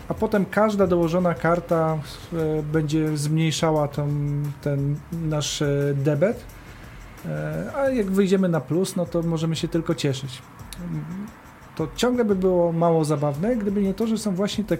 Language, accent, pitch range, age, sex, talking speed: Polish, native, 155-180 Hz, 40-59, male, 140 wpm